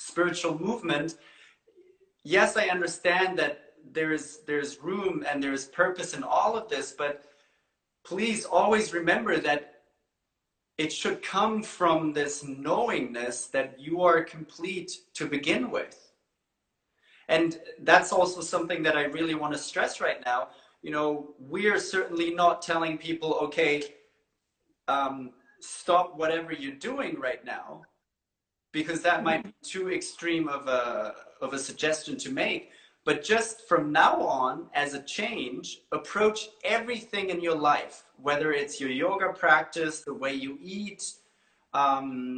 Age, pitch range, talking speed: 30-49, 150-195 Hz, 140 wpm